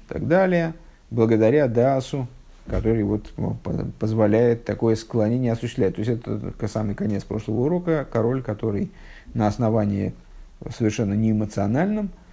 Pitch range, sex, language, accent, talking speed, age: 105-140 Hz, male, Russian, native, 115 wpm, 50-69